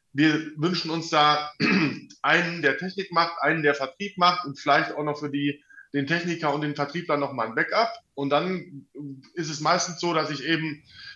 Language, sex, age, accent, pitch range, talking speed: German, male, 20-39, German, 135-170 Hz, 195 wpm